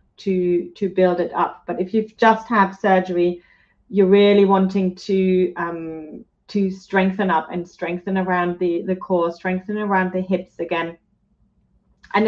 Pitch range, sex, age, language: 180-215 Hz, female, 30-49, English